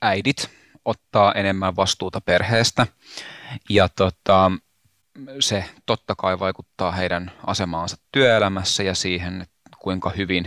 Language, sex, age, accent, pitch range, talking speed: Finnish, male, 30-49, native, 90-100 Hz, 105 wpm